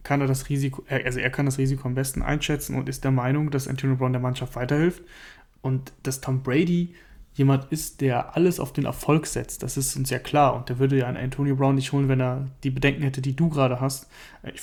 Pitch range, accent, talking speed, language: 130-145 Hz, German, 240 wpm, German